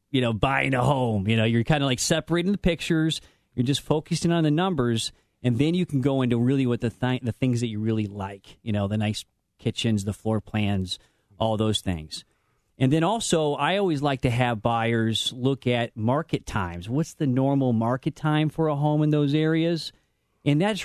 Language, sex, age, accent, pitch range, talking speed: English, male, 40-59, American, 115-160 Hz, 210 wpm